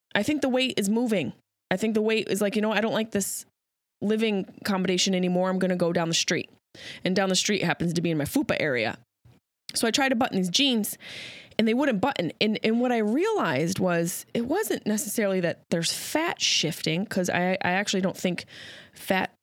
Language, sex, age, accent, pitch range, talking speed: English, female, 20-39, American, 175-250 Hz, 215 wpm